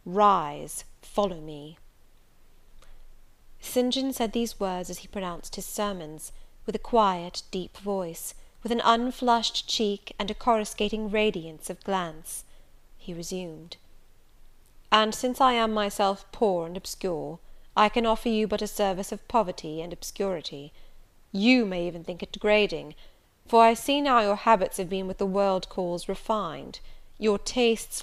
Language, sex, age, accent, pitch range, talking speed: English, female, 30-49, British, 180-215 Hz, 150 wpm